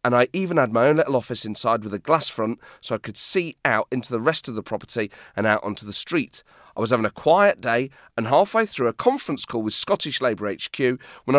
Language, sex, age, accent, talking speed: English, male, 30-49, British, 240 wpm